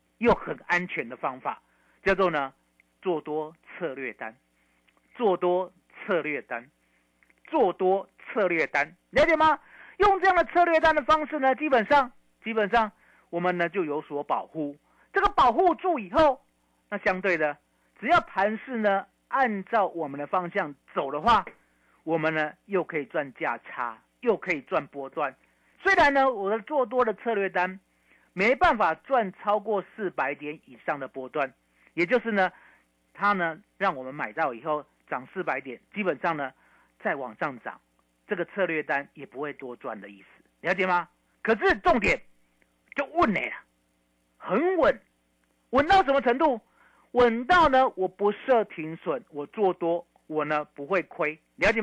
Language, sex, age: Chinese, male, 50-69